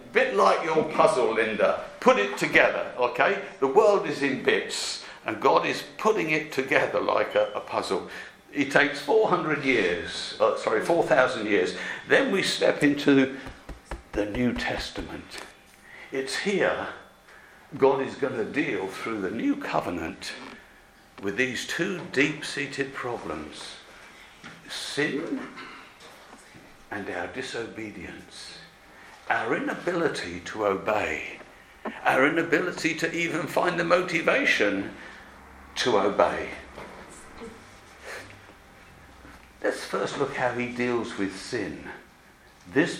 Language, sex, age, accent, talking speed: English, male, 60-79, British, 115 wpm